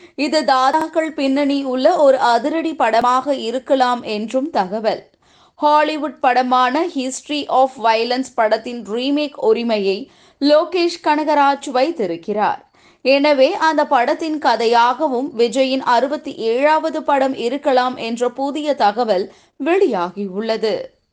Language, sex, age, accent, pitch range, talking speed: Tamil, female, 20-39, native, 240-305 Hz, 100 wpm